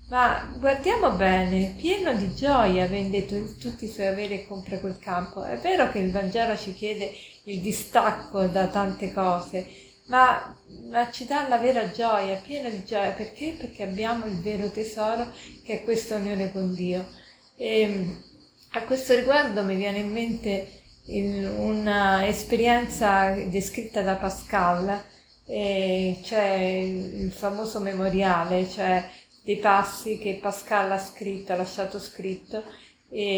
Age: 40-59